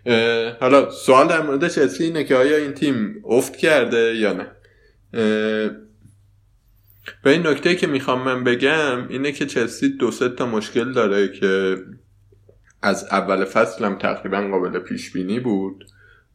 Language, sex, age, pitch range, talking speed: Persian, male, 20-39, 95-110 Hz, 140 wpm